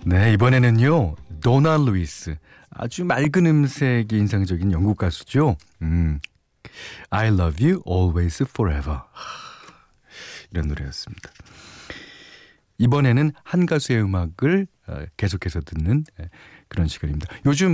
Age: 40-59